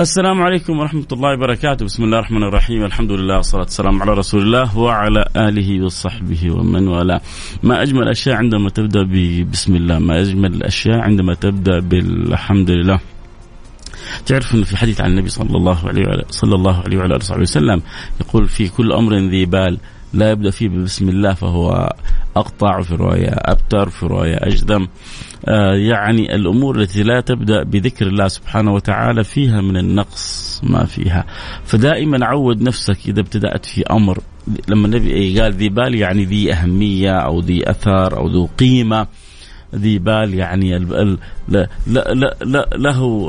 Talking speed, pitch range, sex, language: 150 wpm, 95-115 Hz, male, Arabic